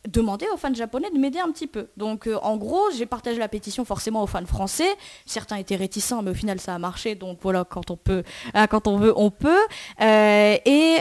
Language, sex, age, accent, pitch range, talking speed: French, female, 20-39, French, 200-255 Hz, 235 wpm